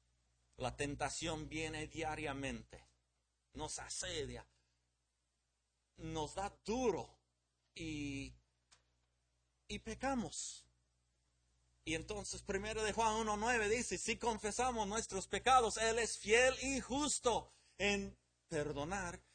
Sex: male